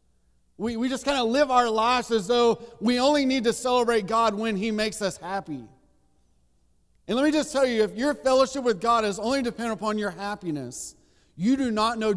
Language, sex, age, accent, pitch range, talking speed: English, male, 40-59, American, 185-240 Hz, 205 wpm